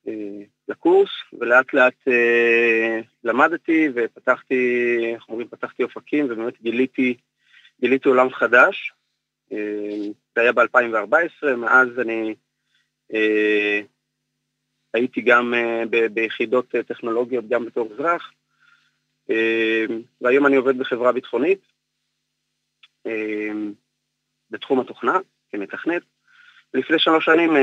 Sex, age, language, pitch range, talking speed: male, 30-49, Hebrew, 115-130 Hz, 95 wpm